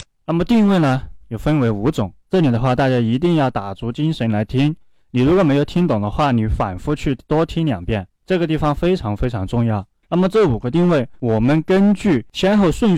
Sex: male